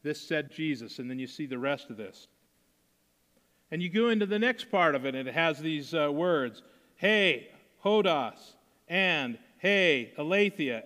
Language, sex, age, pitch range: English, male, 50-69, 155-195 Hz